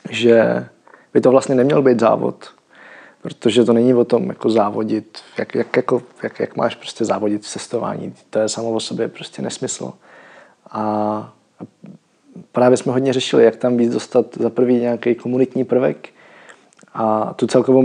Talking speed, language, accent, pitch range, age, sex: 150 wpm, Czech, native, 115-125 Hz, 20-39, male